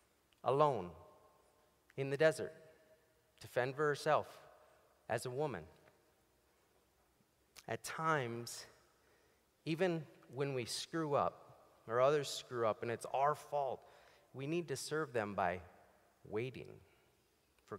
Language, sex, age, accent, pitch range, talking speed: English, male, 30-49, American, 135-175 Hz, 115 wpm